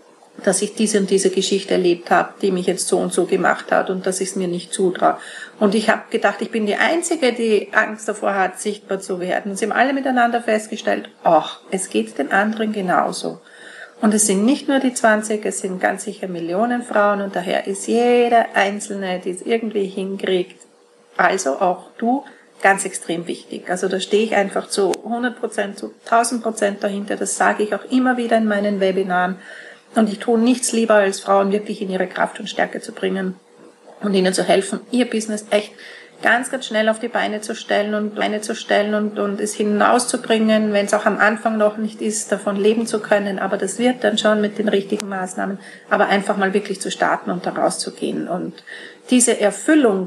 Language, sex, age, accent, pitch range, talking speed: German, female, 40-59, Austrian, 195-225 Hz, 195 wpm